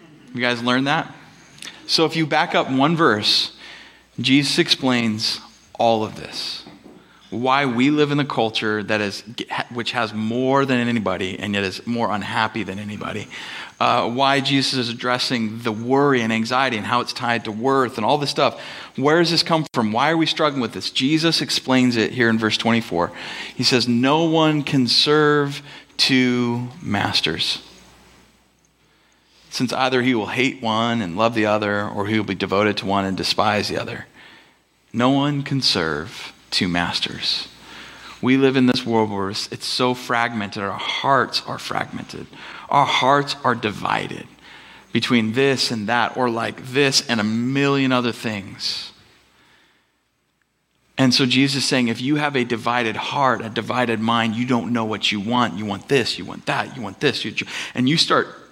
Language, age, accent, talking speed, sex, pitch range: English, 30-49, American, 175 wpm, male, 110-135 Hz